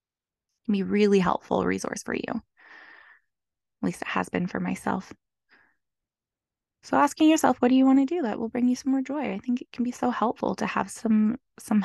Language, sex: English, female